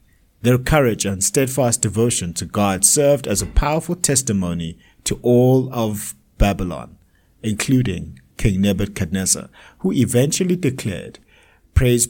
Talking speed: 115 wpm